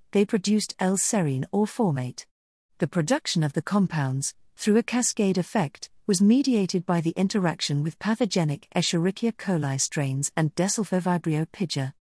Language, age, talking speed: English, 40-59, 135 wpm